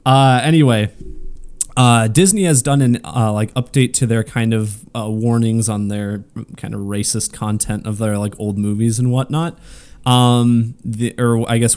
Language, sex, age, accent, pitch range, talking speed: English, male, 20-39, American, 105-125 Hz, 175 wpm